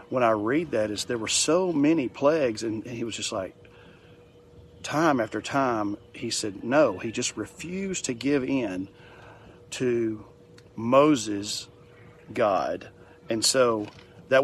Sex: male